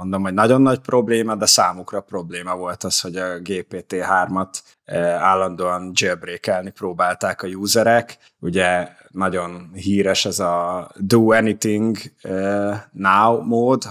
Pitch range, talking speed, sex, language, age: 90-105 Hz, 105 wpm, male, Hungarian, 20-39